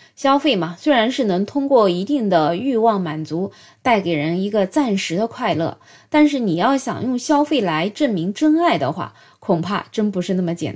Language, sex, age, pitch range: Chinese, female, 20-39, 180-260 Hz